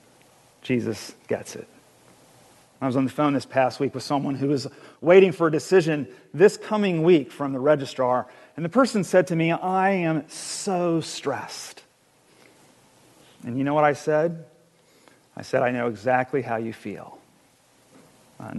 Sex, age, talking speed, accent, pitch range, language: male, 40-59, 160 wpm, American, 130-180 Hz, English